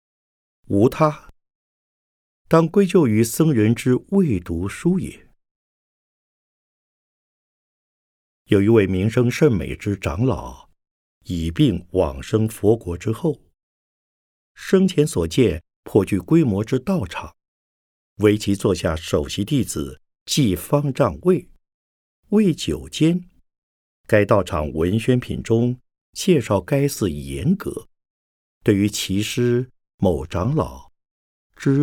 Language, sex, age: Chinese, male, 50-69